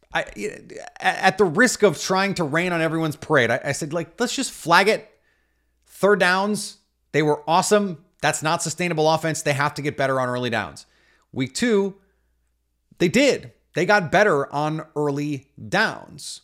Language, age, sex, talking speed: English, 30-49, male, 165 wpm